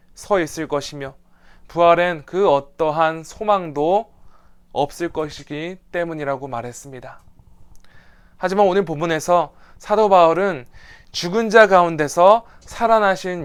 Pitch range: 140-190 Hz